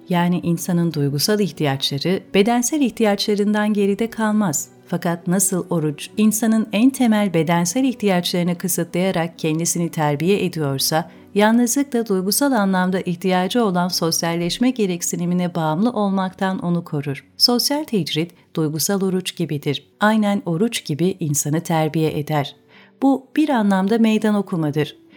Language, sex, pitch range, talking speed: Turkish, female, 165-220 Hz, 115 wpm